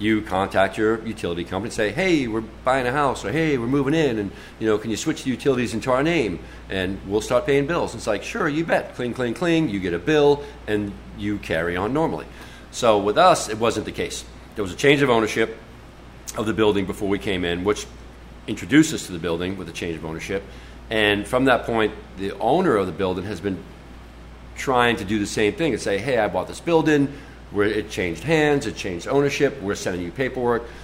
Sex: male